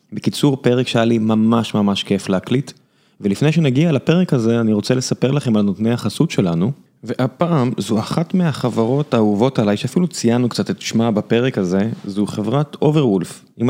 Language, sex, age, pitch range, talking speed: Hebrew, male, 30-49, 110-145 Hz, 160 wpm